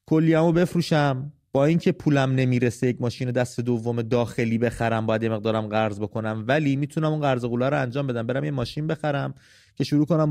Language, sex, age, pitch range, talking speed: English, male, 30-49, 115-145 Hz, 185 wpm